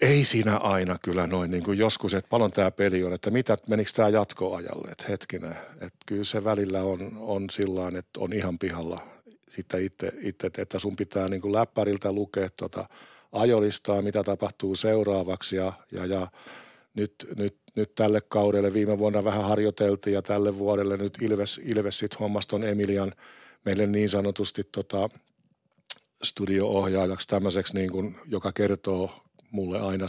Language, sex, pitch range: Finnish, male, 95-105 Hz